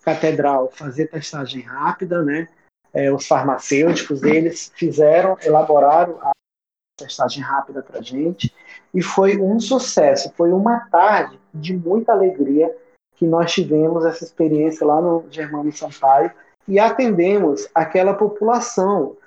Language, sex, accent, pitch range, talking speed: Portuguese, male, Brazilian, 155-190 Hz, 125 wpm